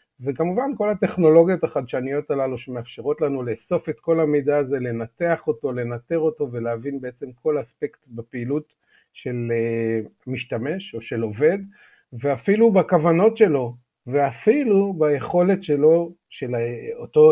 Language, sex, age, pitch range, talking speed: Hebrew, male, 50-69, 130-175 Hz, 120 wpm